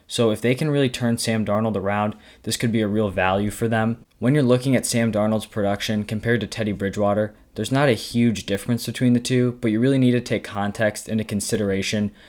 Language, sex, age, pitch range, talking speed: English, male, 20-39, 105-120 Hz, 220 wpm